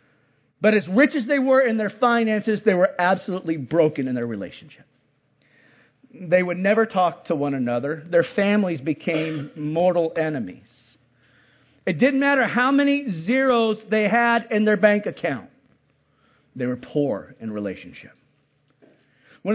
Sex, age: male, 50-69